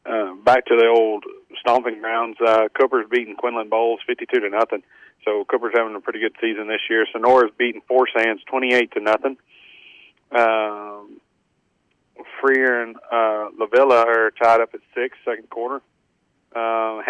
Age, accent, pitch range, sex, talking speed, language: 40-59, American, 110-125 Hz, male, 155 wpm, English